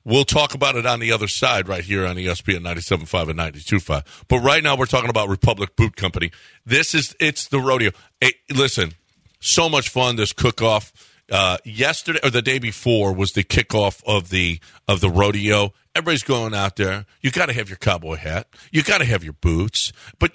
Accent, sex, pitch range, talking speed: American, male, 100-145 Hz, 210 wpm